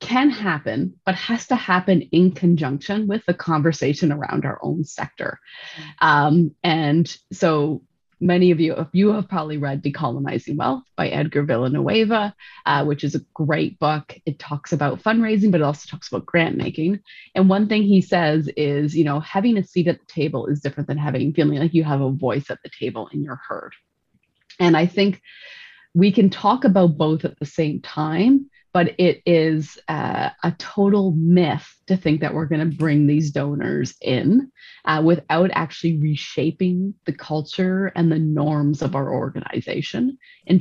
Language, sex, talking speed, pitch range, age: English, female, 175 wpm, 150-190 Hz, 20-39